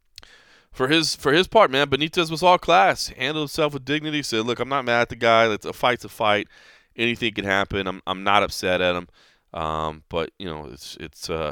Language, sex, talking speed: English, male, 220 wpm